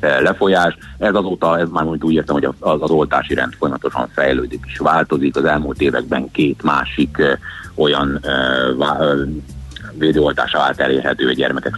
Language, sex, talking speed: Hungarian, male, 125 wpm